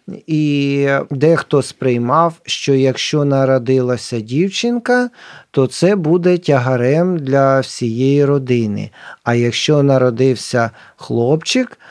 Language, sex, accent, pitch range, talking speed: Ukrainian, male, native, 130-175 Hz, 90 wpm